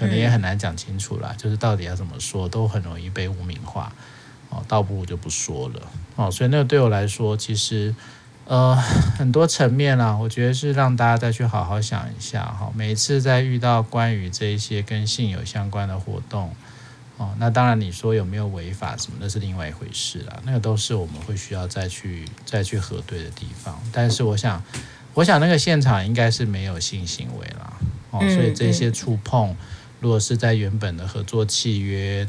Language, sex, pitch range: Chinese, male, 100-120 Hz